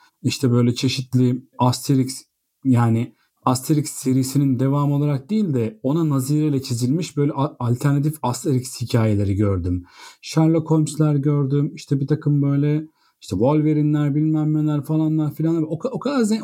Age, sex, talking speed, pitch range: 40-59, male, 125 wpm, 120-160 Hz